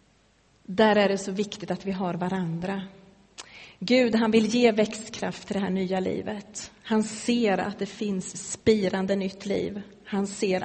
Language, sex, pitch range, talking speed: Swedish, female, 195-220 Hz, 165 wpm